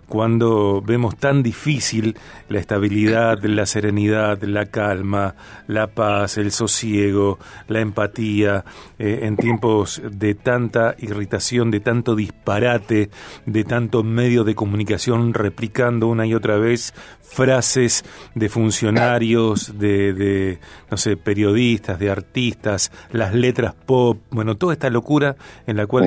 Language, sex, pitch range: Spanish, male, 105-120 Hz